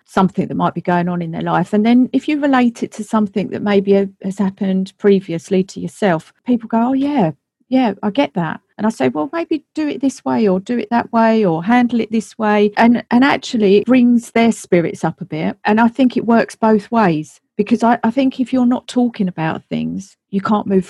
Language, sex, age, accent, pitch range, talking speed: English, female, 40-59, British, 175-220 Hz, 235 wpm